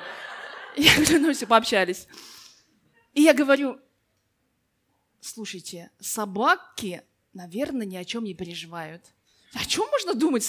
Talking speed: 110 wpm